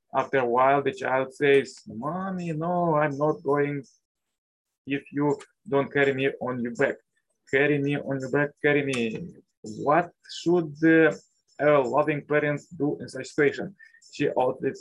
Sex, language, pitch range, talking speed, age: male, English, 140-155 Hz, 155 wpm, 20-39